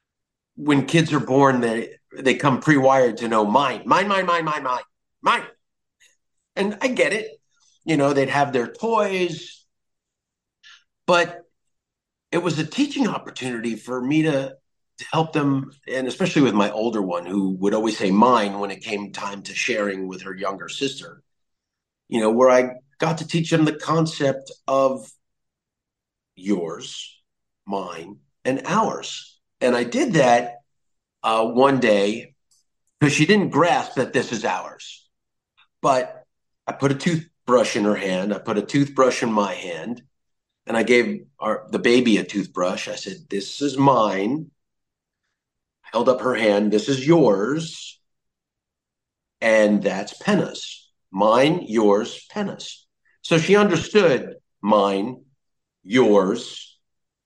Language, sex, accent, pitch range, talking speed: English, male, American, 110-155 Hz, 145 wpm